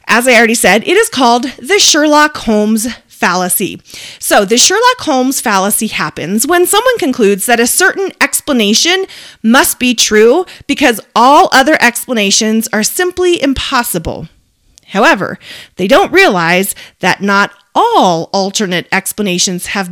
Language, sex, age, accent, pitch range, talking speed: English, female, 30-49, American, 205-295 Hz, 135 wpm